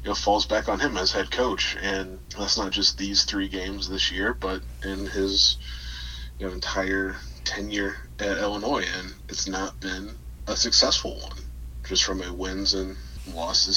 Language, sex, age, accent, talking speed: English, male, 20-39, American, 175 wpm